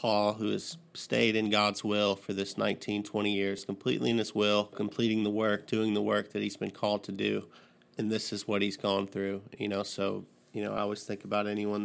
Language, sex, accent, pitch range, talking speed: English, male, American, 100-110 Hz, 230 wpm